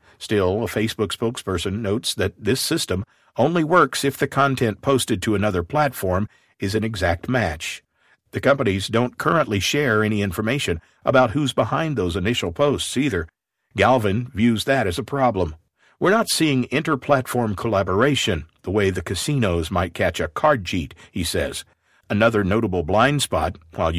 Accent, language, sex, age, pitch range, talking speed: American, English, male, 50-69, 95-130 Hz, 155 wpm